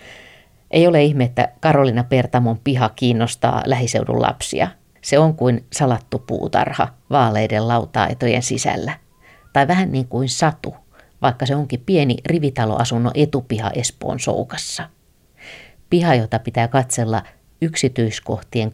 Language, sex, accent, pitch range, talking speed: Finnish, female, native, 115-140 Hz, 115 wpm